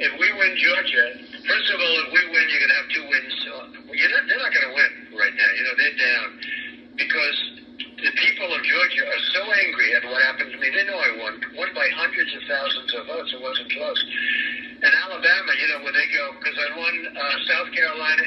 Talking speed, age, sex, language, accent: 225 wpm, 60-79, male, English, American